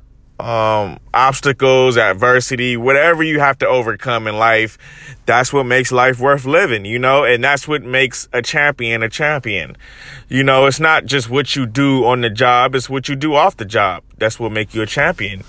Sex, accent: male, American